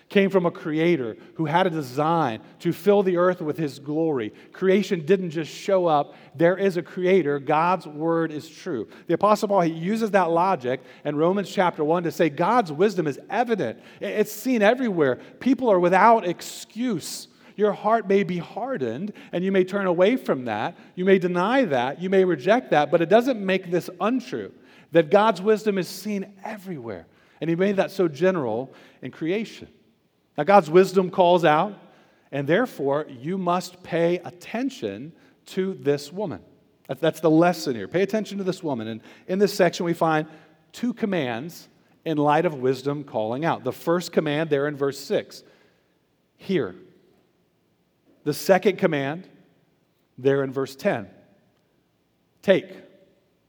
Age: 40-59